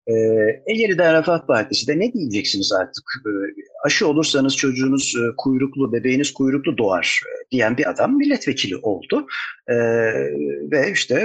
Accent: native